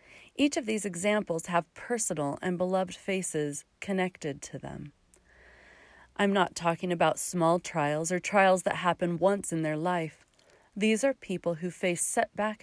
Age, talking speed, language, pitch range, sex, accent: 40-59, 150 wpm, English, 160-210 Hz, female, American